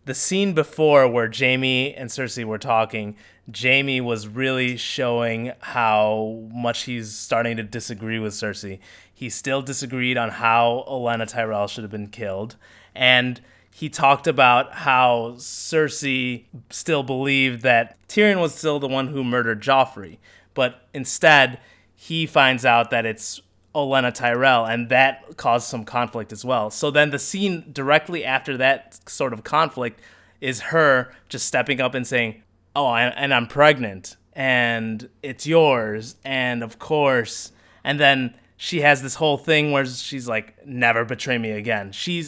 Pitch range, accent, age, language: 115-135 Hz, American, 20-39, English